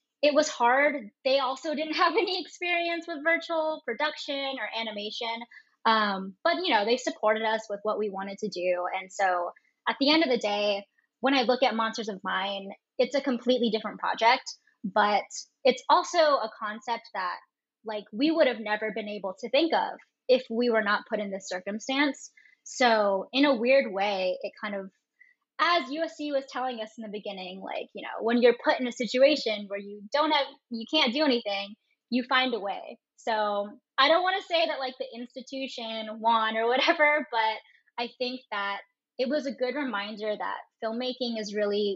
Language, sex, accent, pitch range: English, female, American, 210-275 Hz